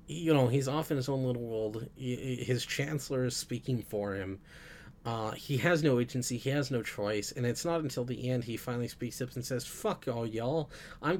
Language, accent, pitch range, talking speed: English, American, 110-140 Hz, 215 wpm